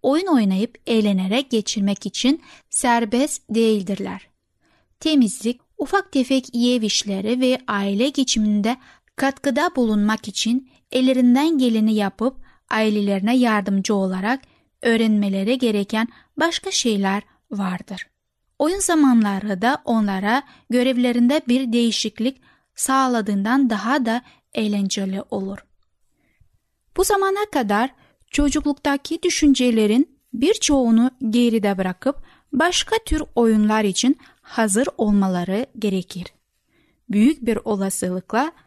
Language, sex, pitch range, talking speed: Turkish, female, 210-270 Hz, 95 wpm